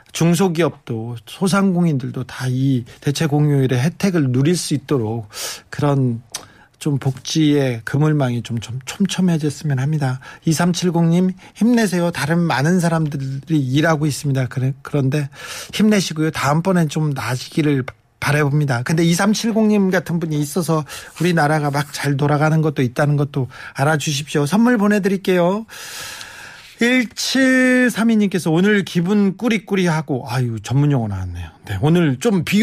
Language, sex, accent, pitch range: Korean, male, native, 135-185 Hz